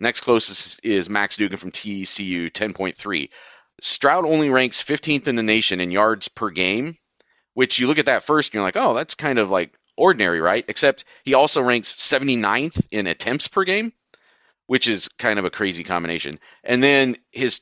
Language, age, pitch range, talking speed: English, 40-59, 90-130 Hz, 185 wpm